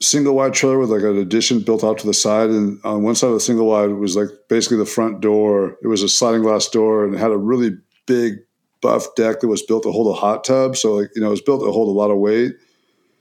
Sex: male